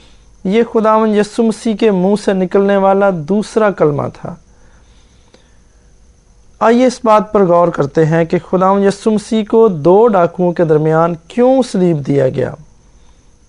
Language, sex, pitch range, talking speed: English, male, 165-215 Hz, 140 wpm